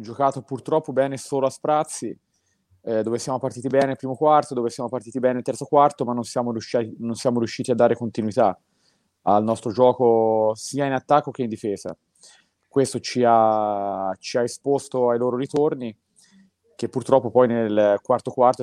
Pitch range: 105-125 Hz